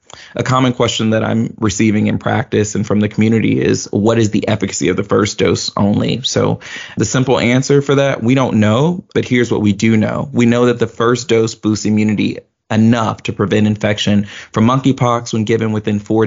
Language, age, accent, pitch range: English, 20-39, American, 105-120 Hz